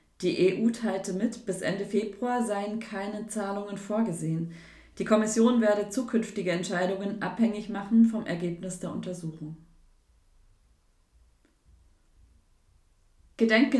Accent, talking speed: German, 100 wpm